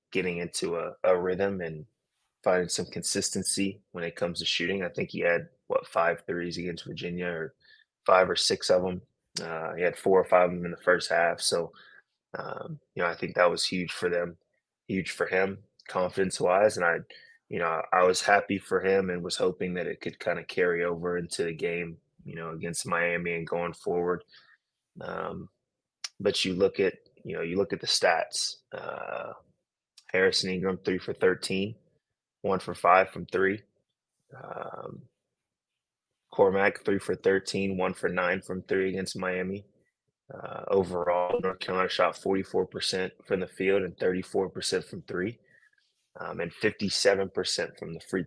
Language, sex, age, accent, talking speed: English, male, 20-39, American, 175 wpm